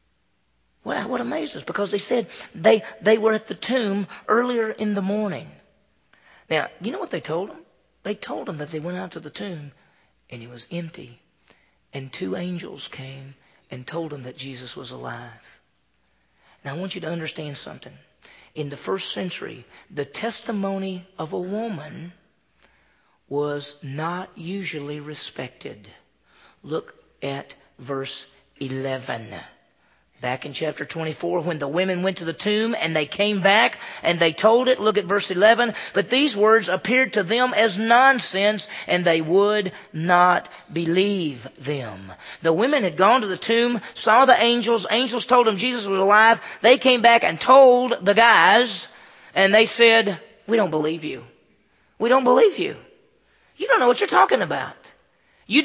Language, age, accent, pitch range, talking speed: English, 40-59, American, 150-225 Hz, 165 wpm